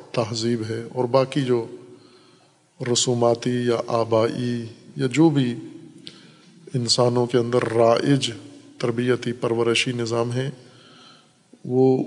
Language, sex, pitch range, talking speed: Urdu, male, 115-140 Hz, 100 wpm